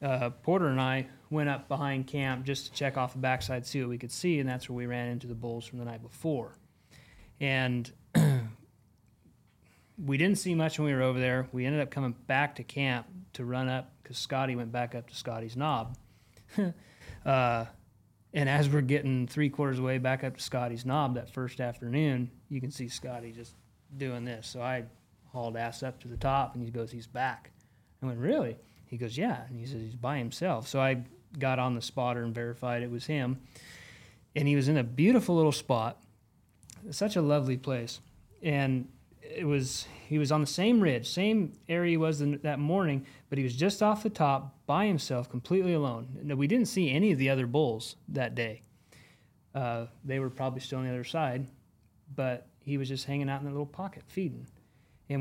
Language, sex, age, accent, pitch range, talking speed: English, male, 30-49, American, 120-145 Hz, 205 wpm